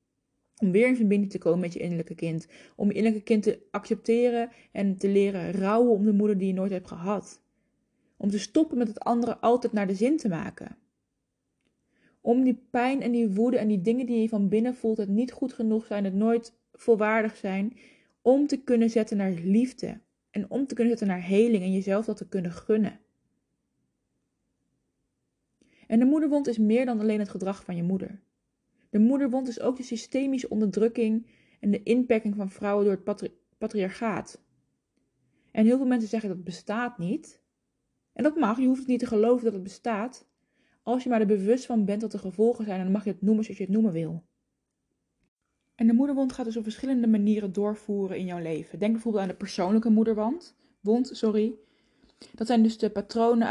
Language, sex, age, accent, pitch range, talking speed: Dutch, female, 20-39, Dutch, 200-235 Hz, 195 wpm